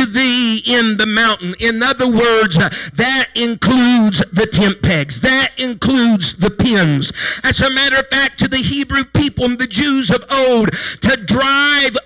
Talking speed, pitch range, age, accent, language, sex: 160 wpm, 220-265 Hz, 50-69, American, English, male